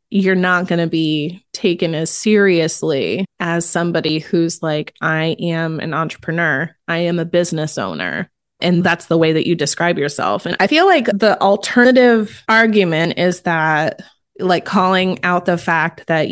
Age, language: 20-39, English